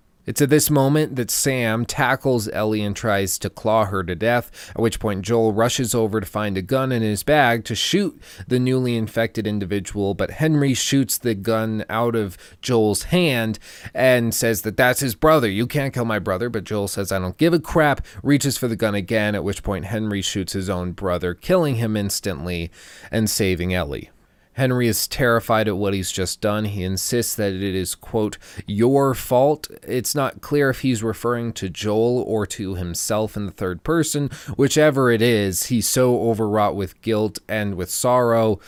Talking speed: 190 wpm